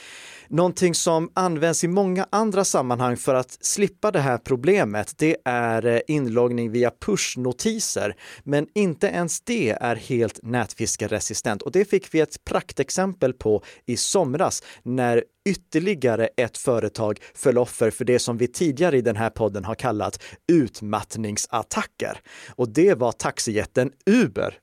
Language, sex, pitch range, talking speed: Swedish, male, 120-165 Hz, 140 wpm